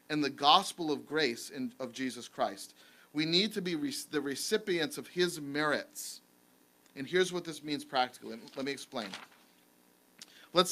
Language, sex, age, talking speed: English, male, 40-59, 175 wpm